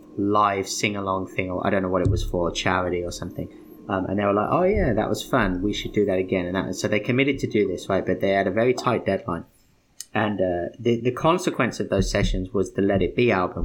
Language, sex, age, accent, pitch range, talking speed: English, male, 30-49, British, 95-115 Hz, 260 wpm